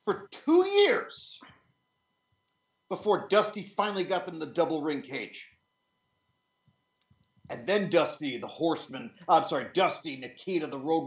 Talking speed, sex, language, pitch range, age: 125 wpm, male, English, 155-230 Hz, 50-69